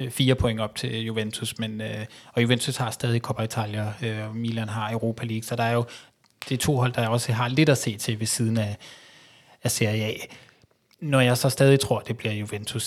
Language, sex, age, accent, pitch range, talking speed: Danish, male, 20-39, native, 115-130 Hz, 215 wpm